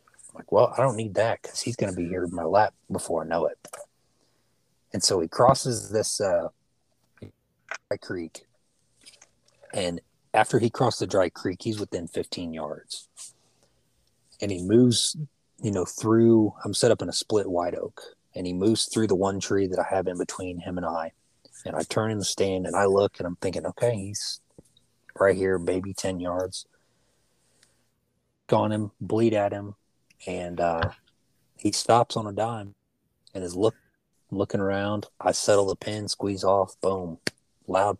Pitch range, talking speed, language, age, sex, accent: 85-110 Hz, 175 wpm, English, 30-49, male, American